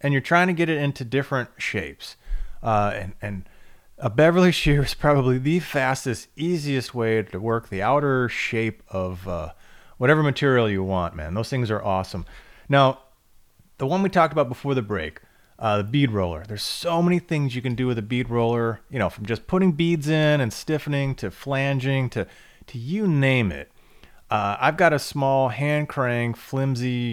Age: 30-49